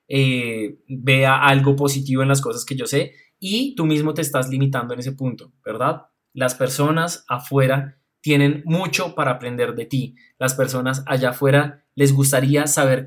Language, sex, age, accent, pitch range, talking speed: Spanish, male, 20-39, Colombian, 135-160 Hz, 165 wpm